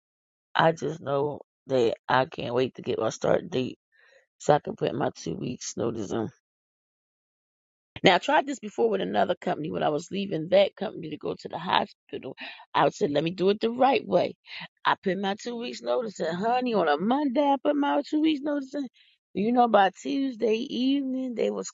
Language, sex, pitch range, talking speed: English, female, 185-250 Hz, 205 wpm